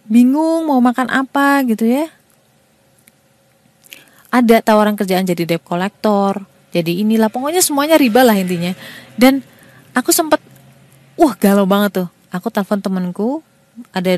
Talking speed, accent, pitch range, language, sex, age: 130 wpm, native, 185-240 Hz, Indonesian, female, 30-49